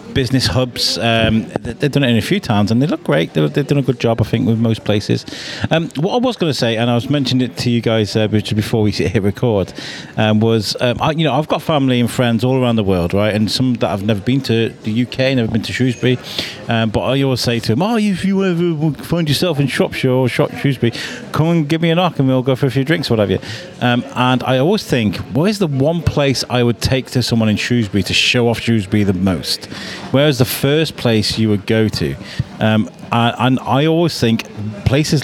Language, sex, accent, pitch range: English, male, British, 110-135 Hz